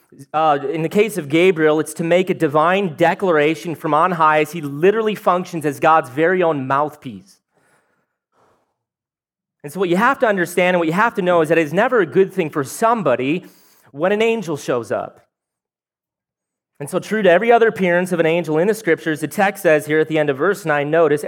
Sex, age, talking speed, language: male, 30-49, 210 wpm, English